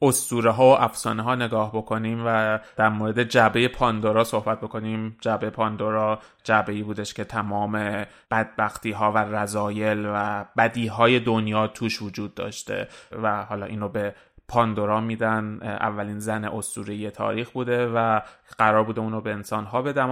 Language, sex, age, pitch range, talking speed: Persian, male, 20-39, 105-115 Hz, 150 wpm